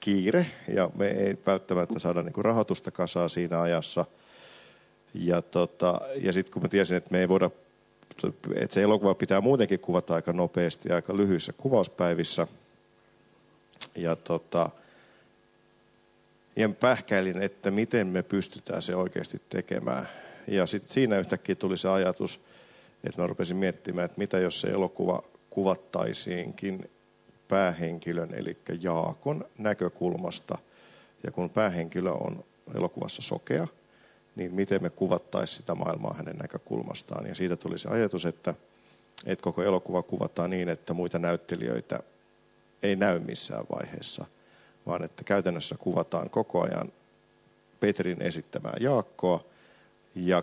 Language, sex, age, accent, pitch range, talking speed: Finnish, male, 50-69, native, 85-95 Hz, 130 wpm